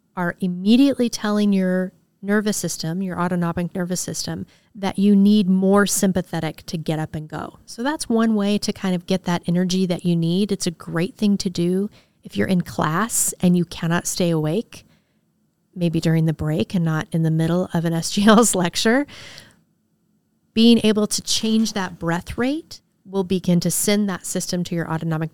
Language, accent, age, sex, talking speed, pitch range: English, American, 30-49, female, 180 wpm, 175-205 Hz